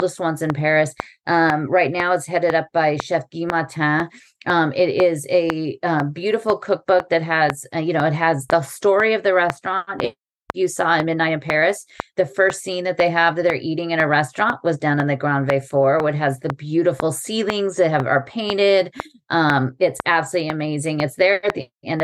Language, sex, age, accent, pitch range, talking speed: English, female, 30-49, American, 150-185 Hz, 210 wpm